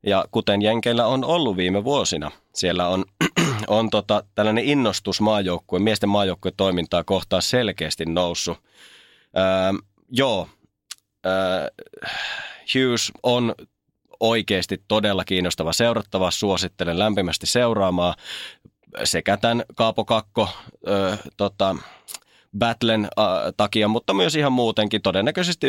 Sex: male